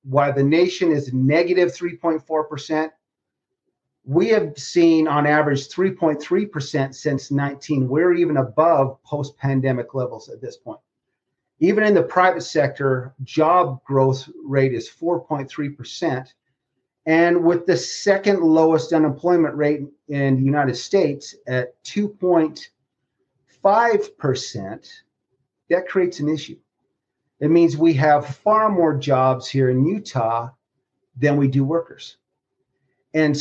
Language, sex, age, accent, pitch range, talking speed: English, male, 40-59, American, 140-175 Hz, 115 wpm